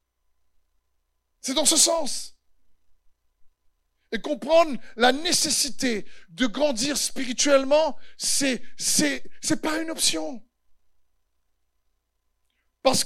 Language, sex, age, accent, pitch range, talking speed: French, male, 50-69, French, 190-275 Hz, 85 wpm